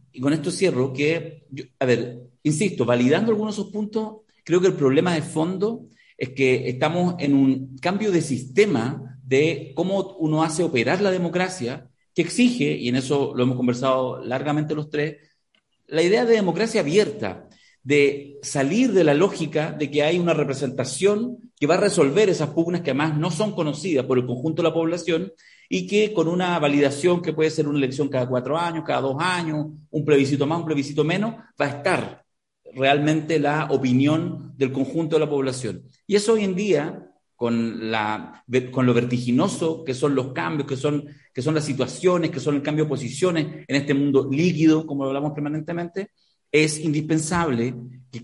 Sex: male